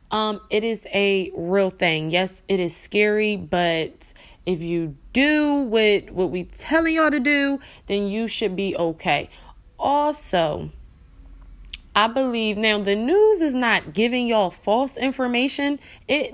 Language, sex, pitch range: English, female, 185-245 Hz